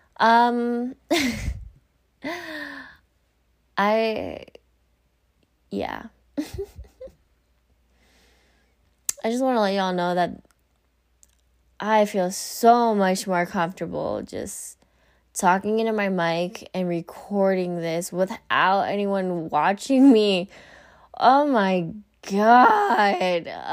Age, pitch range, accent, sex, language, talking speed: 20-39, 170-225 Hz, American, female, English, 80 wpm